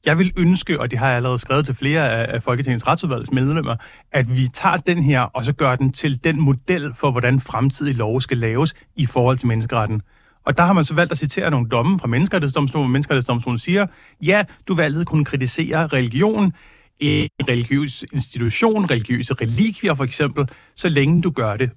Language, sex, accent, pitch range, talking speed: Danish, male, native, 120-150 Hz, 195 wpm